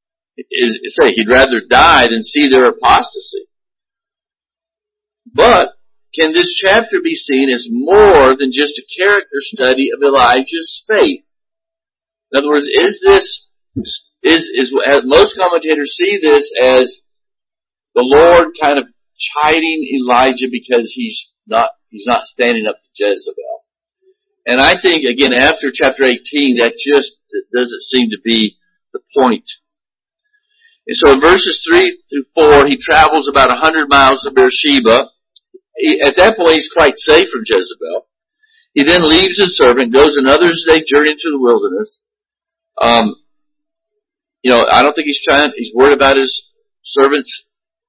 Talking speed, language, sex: 145 wpm, English, male